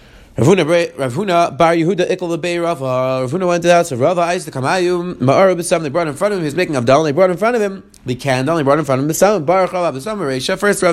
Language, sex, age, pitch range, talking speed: English, male, 30-49, 150-195 Hz, 180 wpm